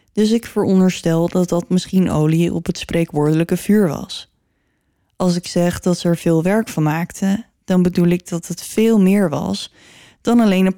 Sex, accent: female, Dutch